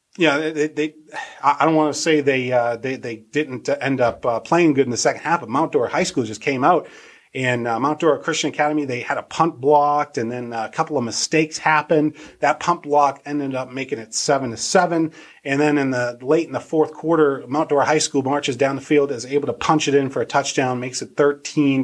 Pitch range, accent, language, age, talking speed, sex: 125-155 Hz, American, English, 30-49, 240 wpm, male